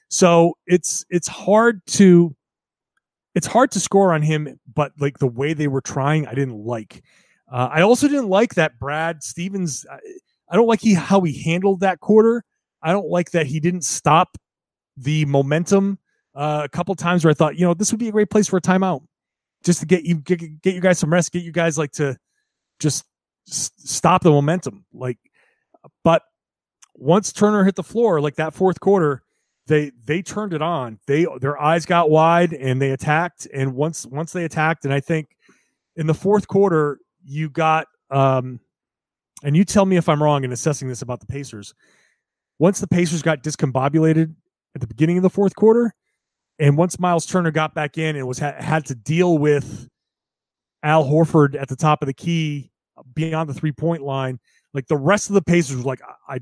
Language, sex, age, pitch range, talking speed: English, male, 30-49, 140-180 Hz, 195 wpm